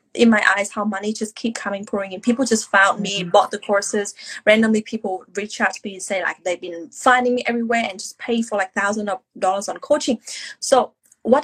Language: English